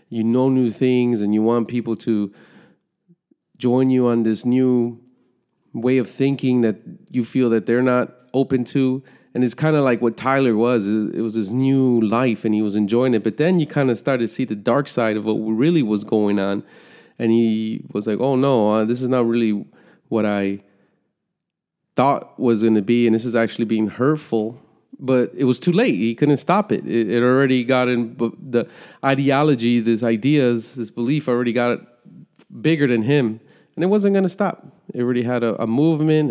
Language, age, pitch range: English, 30-49, 115-150 Hz